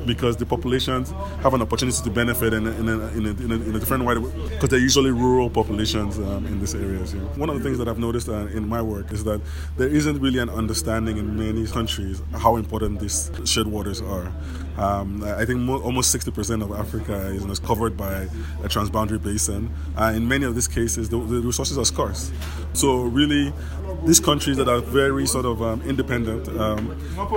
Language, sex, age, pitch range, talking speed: English, male, 20-39, 85-115 Hz, 215 wpm